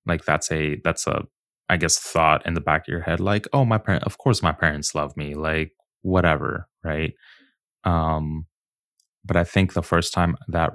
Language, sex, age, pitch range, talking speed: English, male, 20-39, 80-95 Hz, 195 wpm